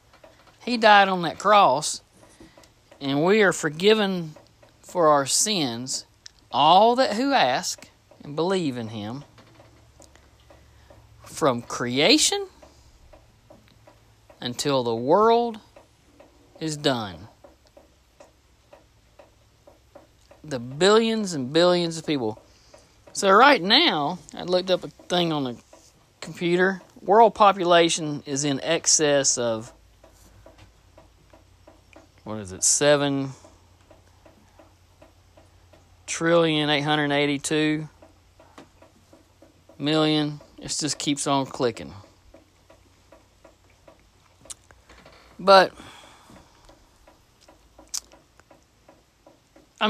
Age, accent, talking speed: 50-69, American, 80 wpm